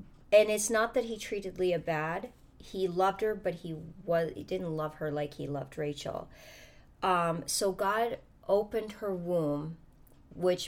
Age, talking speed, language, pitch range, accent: 30-49, 165 wpm, English, 165-210 Hz, American